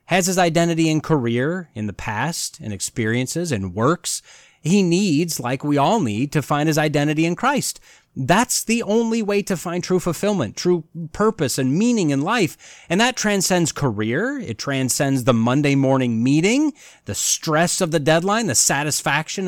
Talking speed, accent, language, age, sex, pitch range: 170 wpm, American, English, 30-49, male, 130-185 Hz